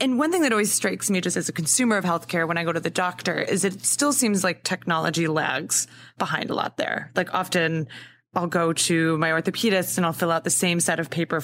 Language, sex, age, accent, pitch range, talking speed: English, female, 20-39, American, 165-200 Hz, 240 wpm